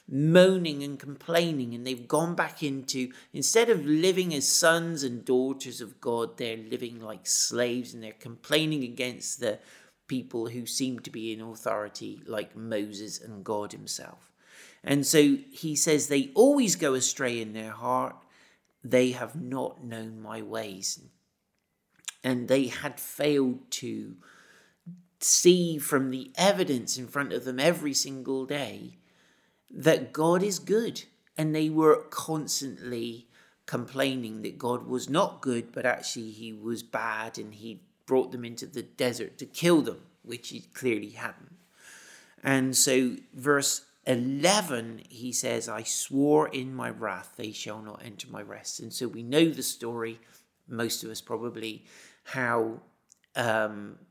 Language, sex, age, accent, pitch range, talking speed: English, male, 40-59, British, 115-145 Hz, 150 wpm